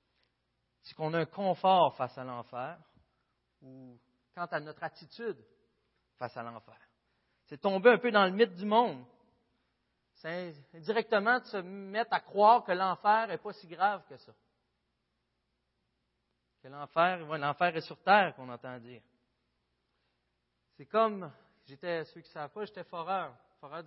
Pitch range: 130-190 Hz